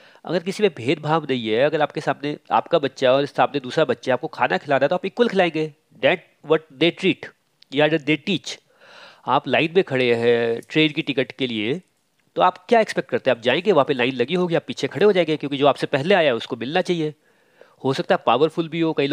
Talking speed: 230 wpm